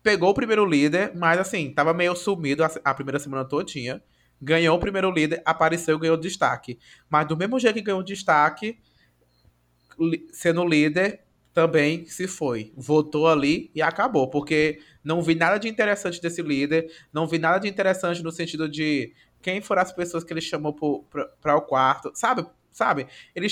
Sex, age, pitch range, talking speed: male, 20-39, 145-185 Hz, 180 wpm